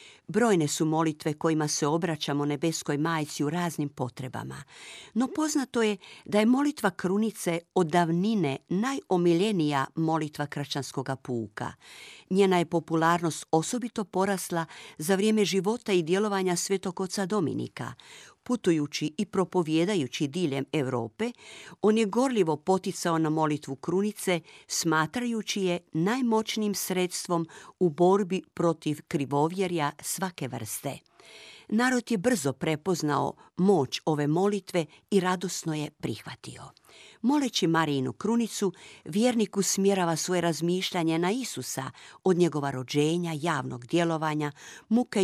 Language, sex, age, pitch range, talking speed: Croatian, female, 50-69, 155-200 Hz, 110 wpm